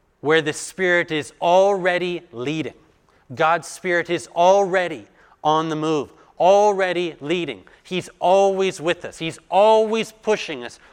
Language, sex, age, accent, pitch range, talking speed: English, male, 30-49, American, 135-175 Hz, 125 wpm